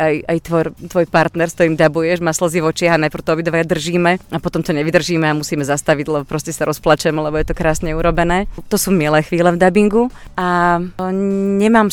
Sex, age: female, 30-49